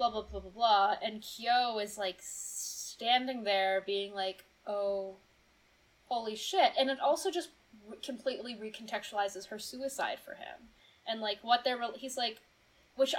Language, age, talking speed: English, 10-29, 160 wpm